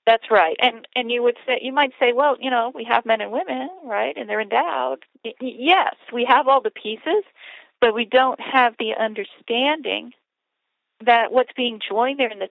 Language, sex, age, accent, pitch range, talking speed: English, female, 50-69, American, 190-255 Hz, 195 wpm